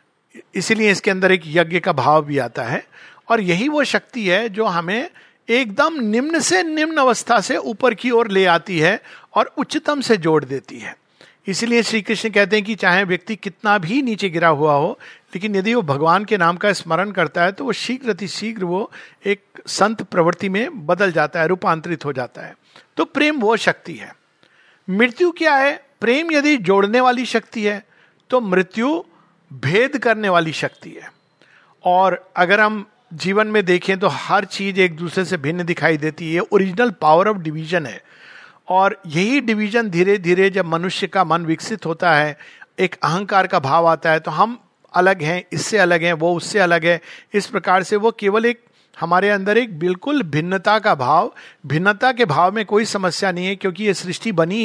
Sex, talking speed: male, 185 wpm